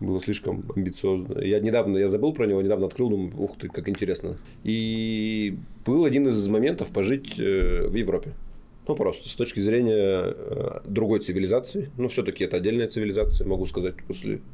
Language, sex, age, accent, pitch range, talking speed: Russian, male, 20-39, native, 95-110 Hz, 165 wpm